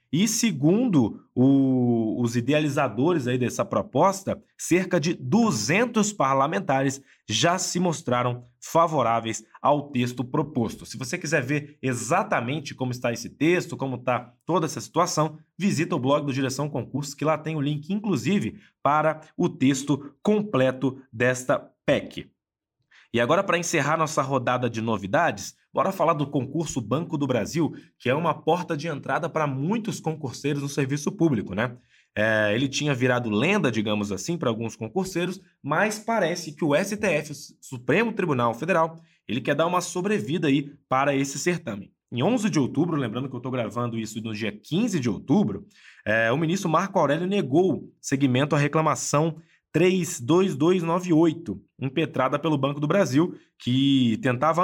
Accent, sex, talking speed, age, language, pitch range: Brazilian, male, 150 wpm, 20-39, Portuguese, 125-170 Hz